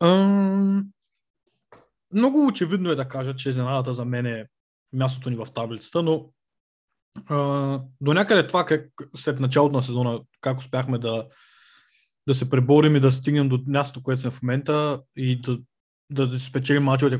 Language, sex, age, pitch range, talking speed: Bulgarian, male, 20-39, 130-150 Hz, 155 wpm